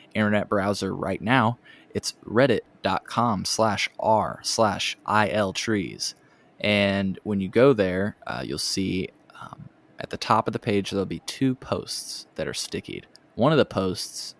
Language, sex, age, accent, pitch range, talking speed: English, male, 20-39, American, 95-115 Hz, 160 wpm